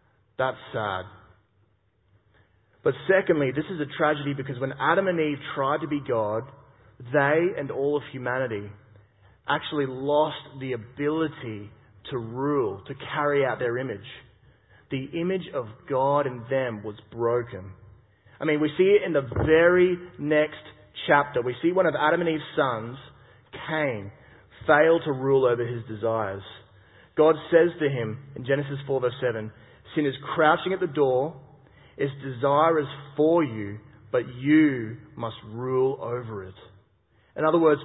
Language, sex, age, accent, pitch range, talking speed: English, male, 30-49, Australian, 115-155 Hz, 150 wpm